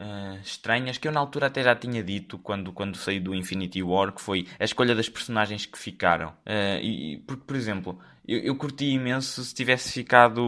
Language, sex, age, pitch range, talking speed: Portuguese, male, 20-39, 100-130 Hz, 210 wpm